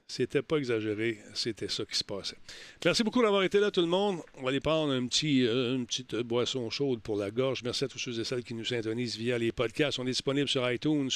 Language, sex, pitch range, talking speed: French, male, 110-140 Hz, 255 wpm